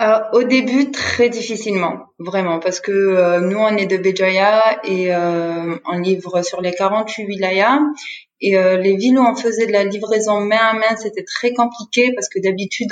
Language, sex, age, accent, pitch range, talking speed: French, female, 30-49, French, 180-250 Hz, 190 wpm